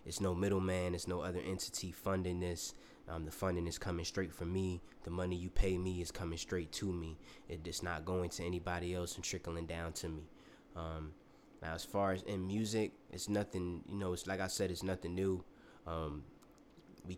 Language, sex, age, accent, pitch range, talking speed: English, male, 20-39, American, 85-95 Hz, 205 wpm